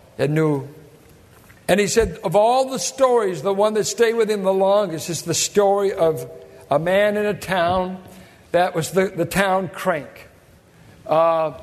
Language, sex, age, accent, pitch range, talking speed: English, male, 60-79, American, 145-190 Hz, 170 wpm